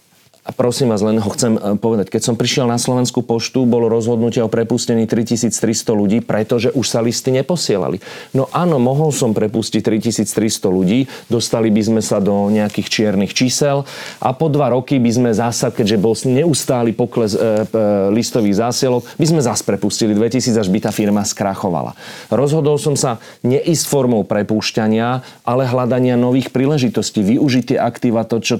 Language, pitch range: Slovak, 110-125 Hz